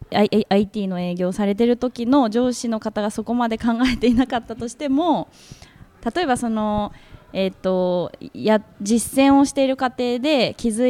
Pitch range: 195-245 Hz